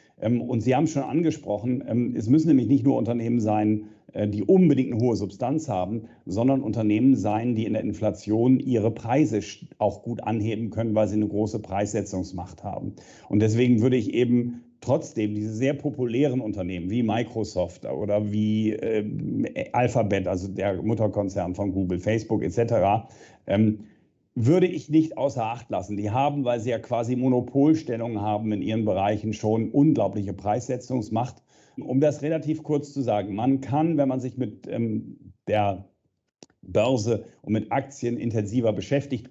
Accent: German